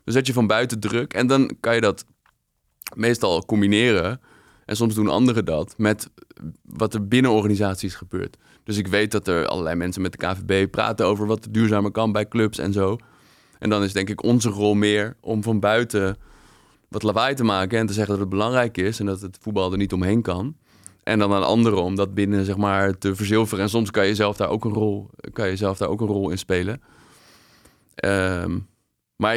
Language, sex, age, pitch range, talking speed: Dutch, male, 20-39, 100-110 Hz, 195 wpm